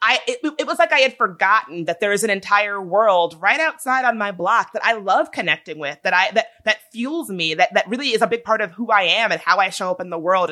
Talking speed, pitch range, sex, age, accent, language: 280 wpm, 170-235 Hz, female, 30-49, American, English